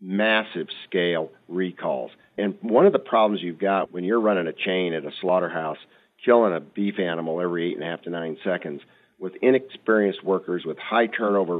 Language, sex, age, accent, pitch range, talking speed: English, male, 50-69, American, 85-105 Hz, 185 wpm